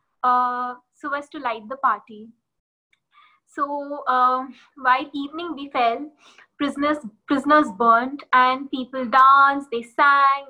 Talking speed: 120 wpm